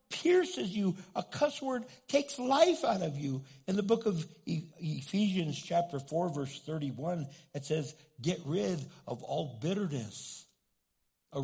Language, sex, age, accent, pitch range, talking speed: English, male, 60-79, American, 135-180 Hz, 140 wpm